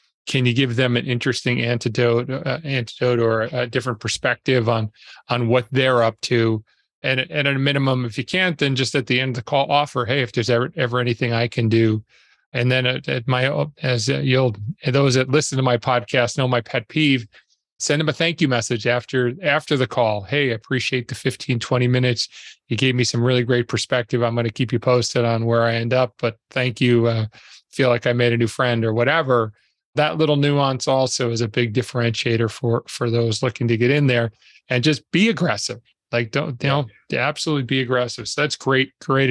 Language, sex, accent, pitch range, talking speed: English, male, American, 120-140 Hz, 215 wpm